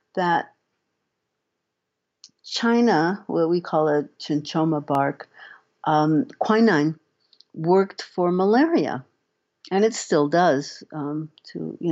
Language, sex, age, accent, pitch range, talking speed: English, female, 60-79, American, 155-205 Hz, 100 wpm